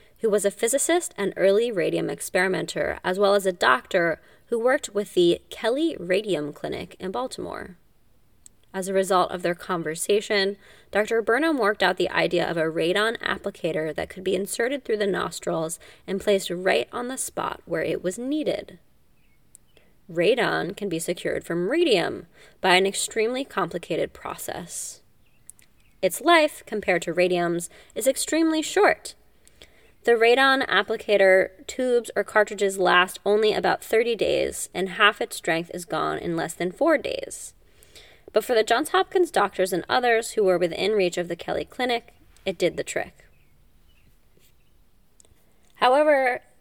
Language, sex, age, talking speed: English, female, 20-39, 150 wpm